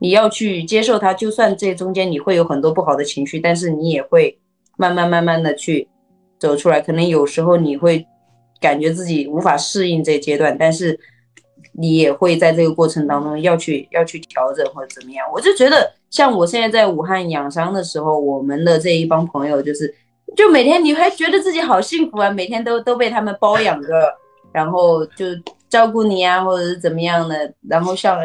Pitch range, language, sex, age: 160-255 Hz, Chinese, female, 20-39